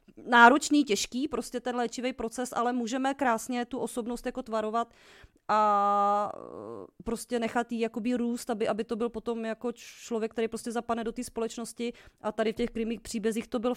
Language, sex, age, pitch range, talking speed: Czech, female, 30-49, 210-245 Hz, 175 wpm